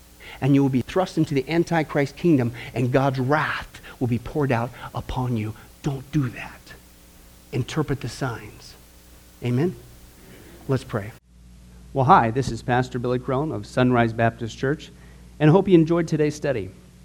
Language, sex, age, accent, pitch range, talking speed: English, male, 50-69, American, 100-150 Hz, 160 wpm